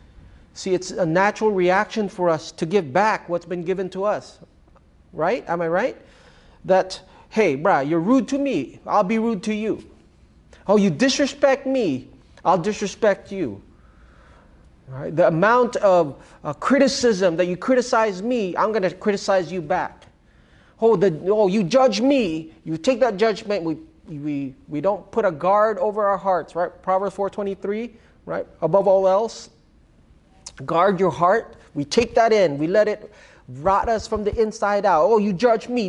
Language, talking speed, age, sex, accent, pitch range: English, 170 wpm, 30-49, male, American, 175-215 Hz